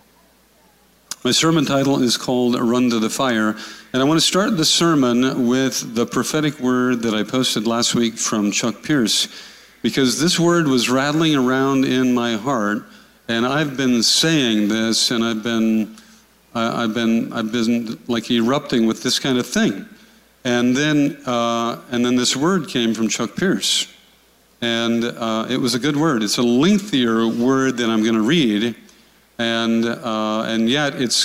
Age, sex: 50-69, male